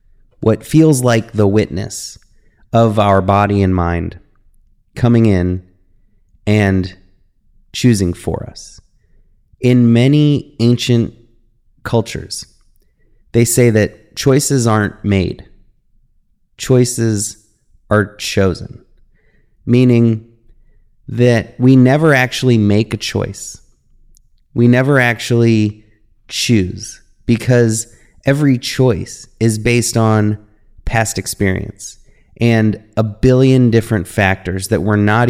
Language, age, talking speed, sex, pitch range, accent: English, 30-49, 95 wpm, male, 100-120 Hz, American